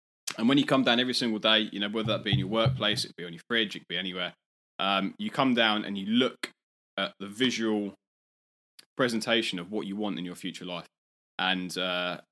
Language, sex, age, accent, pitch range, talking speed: English, male, 20-39, British, 95-120 Hz, 225 wpm